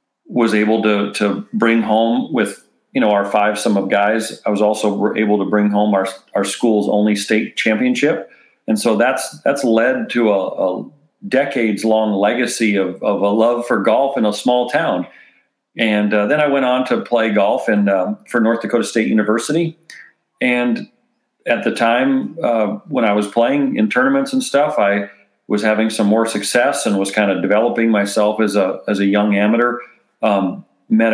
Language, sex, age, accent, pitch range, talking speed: English, male, 40-59, American, 105-125 Hz, 185 wpm